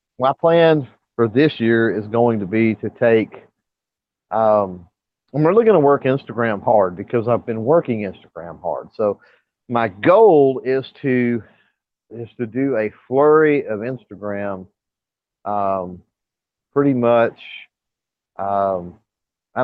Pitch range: 100-125 Hz